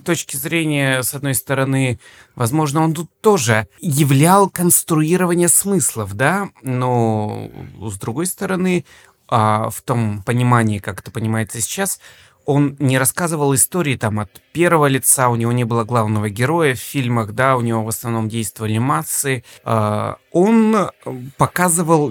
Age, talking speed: 30-49, 135 wpm